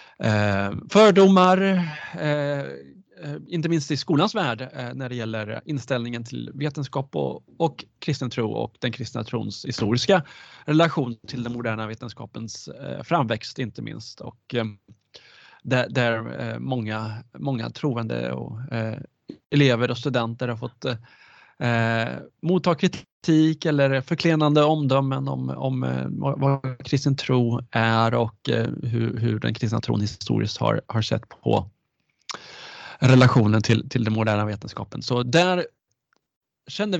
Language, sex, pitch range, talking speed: Swedish, male, 115-145 Hz, 115 wpm